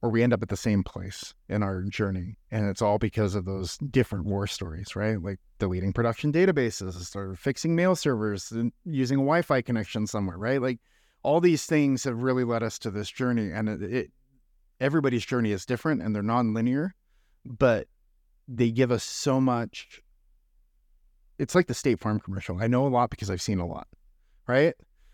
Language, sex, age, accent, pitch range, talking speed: English, male, 30-49, American, 100-130 Hz, 190 wpm